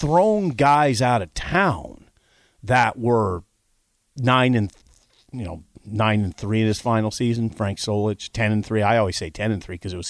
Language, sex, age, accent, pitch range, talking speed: English, male, 40-59, American, 100-145 Hz, 190 wpm